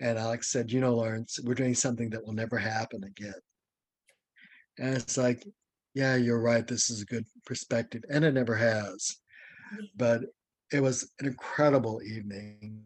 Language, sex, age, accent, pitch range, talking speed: English, male, 60-79, American, 110-130 Hz, 165 wpm